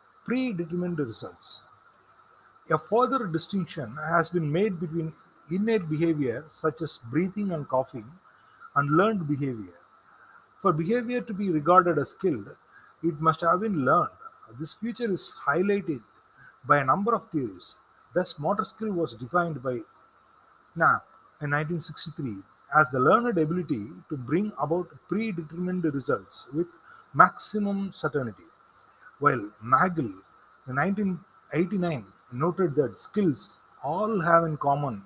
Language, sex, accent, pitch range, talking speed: Tamil, male, native, 150-195 Hz, 125 wpm